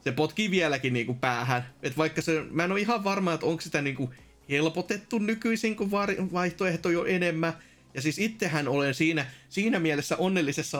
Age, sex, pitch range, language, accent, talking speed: 30-49, male, 140-215 Hz, Finnish, native, 180 wpm